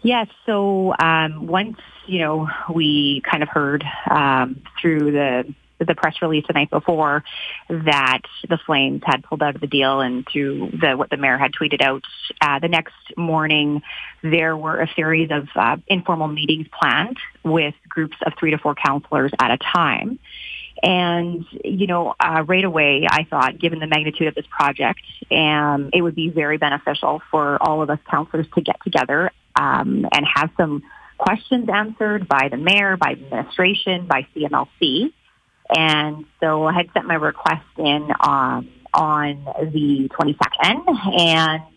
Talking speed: 165 wpm